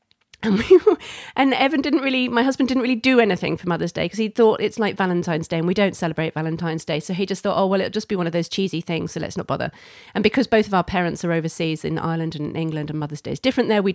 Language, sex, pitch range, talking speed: English, female, 170-225 Hz, 275 wpm